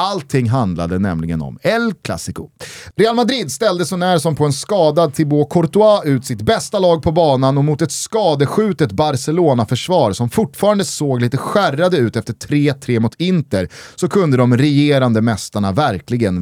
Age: 30-49